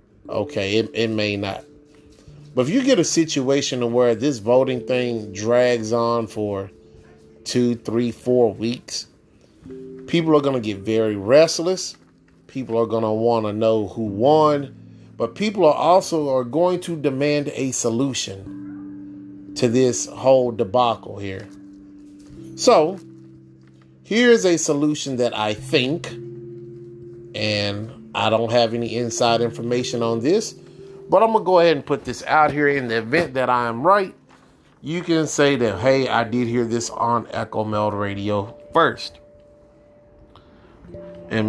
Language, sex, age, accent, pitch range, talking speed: English, male, 30-49, American, 105-145 Hz, 150 wpm